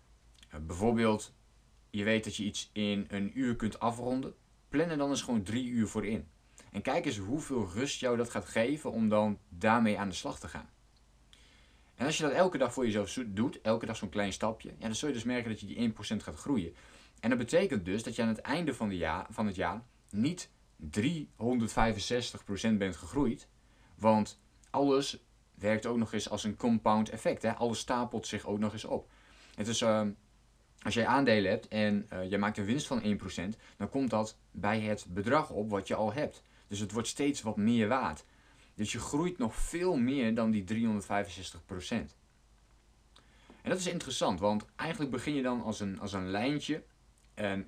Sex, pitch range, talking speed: male, 100-120 Hz, 190 wpm